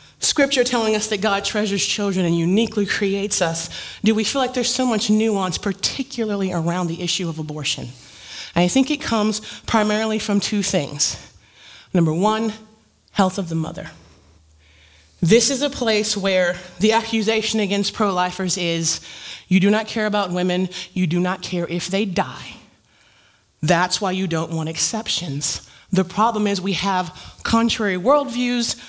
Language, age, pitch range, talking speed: English, 30-49, 170-220 Hz, 155 wpm